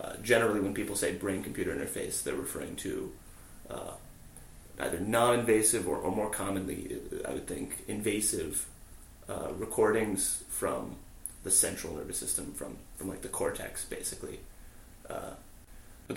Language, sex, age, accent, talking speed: English, male, 30-49, American, 135 wpm